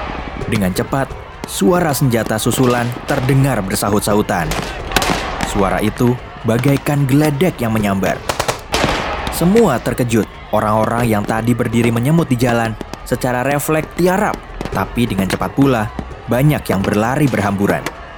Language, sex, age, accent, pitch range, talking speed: Indonesian, male, 20-39, native, 110-160 Hz, 110 wpm